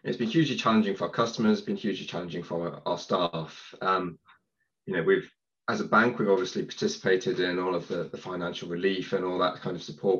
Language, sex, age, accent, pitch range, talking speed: English, male, 20-39, British, 90-125 Hz, 210 wpm